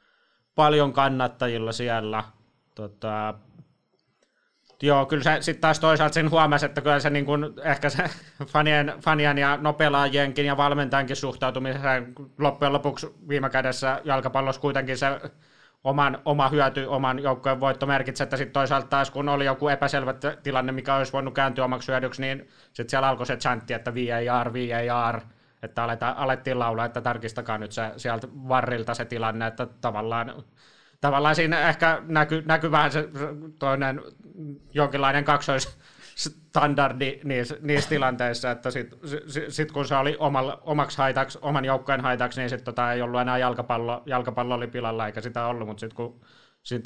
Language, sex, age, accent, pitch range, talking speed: Finnish, male, 20-39, native, 120-145 Hz, 145 wpm